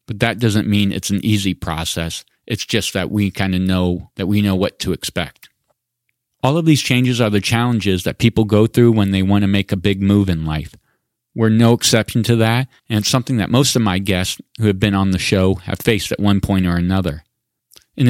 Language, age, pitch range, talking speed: English, 40-59, 95-115 Hz, 225 wpm